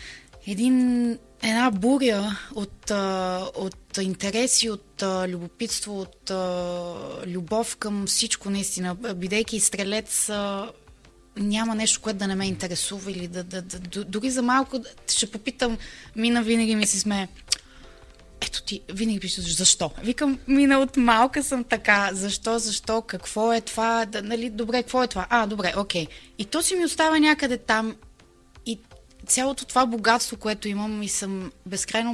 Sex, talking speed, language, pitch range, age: female, 155 wpm, Bulgarian, 180-225 Hz, 20-39